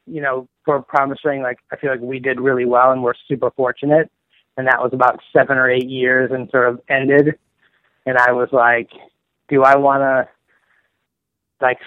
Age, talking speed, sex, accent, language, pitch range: 20-39, 185 wpm, male, American, English, 120-135 Hz